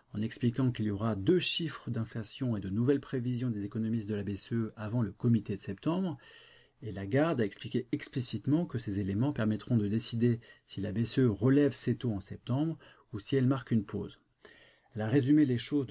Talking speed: 200 wpm